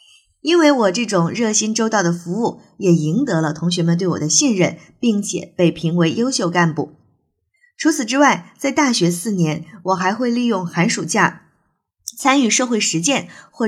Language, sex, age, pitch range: Chinese, female, 20-39, 170-240 Hz